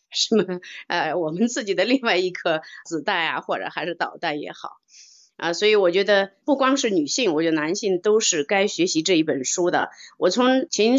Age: 30-49